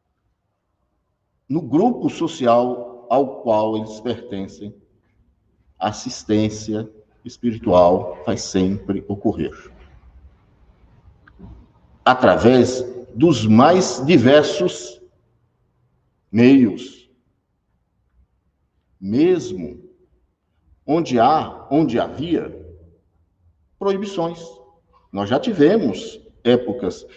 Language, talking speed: Portuguese, 60 wpm